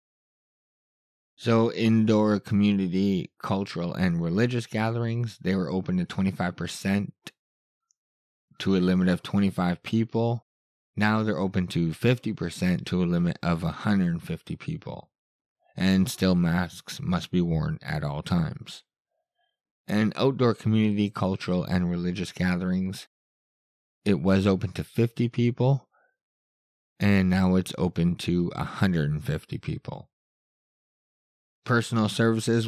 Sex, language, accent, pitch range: male, English, American, 85-110 Hz